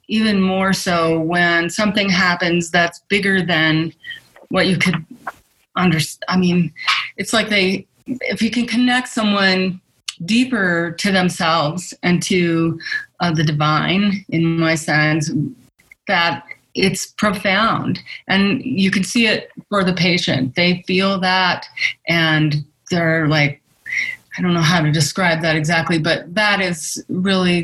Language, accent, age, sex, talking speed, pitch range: English, American, 30-49, female, 135 wpm, 165-195 Hz